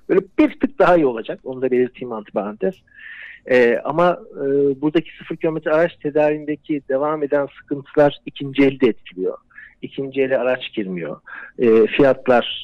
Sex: male